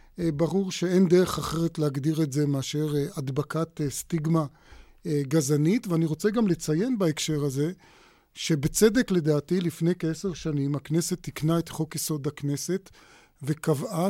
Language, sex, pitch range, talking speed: Hebrew, male, 150-180 Hz, 120 wpm